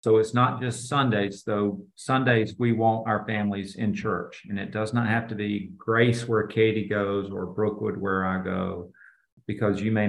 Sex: male